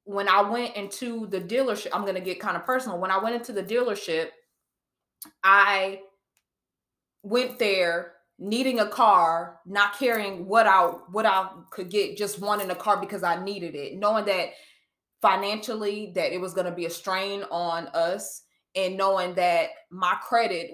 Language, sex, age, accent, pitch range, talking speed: English, female, 20-39, American, 180-220 Hz, 170 wpm